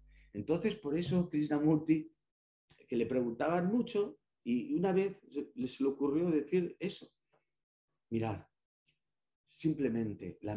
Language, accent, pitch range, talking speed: Spanish, Spanish, 115-155 Hz, 100 wpm